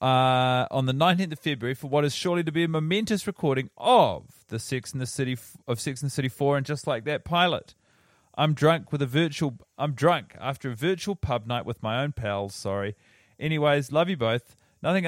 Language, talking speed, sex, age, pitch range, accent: English, 215 wpm, male, 30-49, 115-150 Hz, Australian